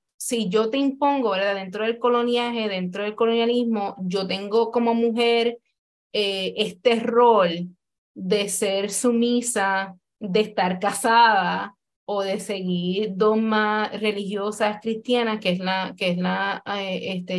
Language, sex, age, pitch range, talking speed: Spanish, female, 20-39, 195-235 Hz, 130 wpm